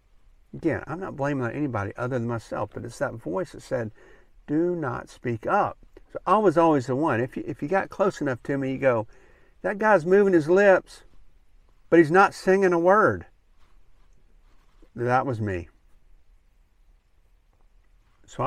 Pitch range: 90-125 Hz